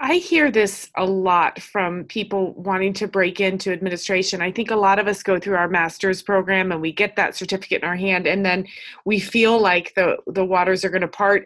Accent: American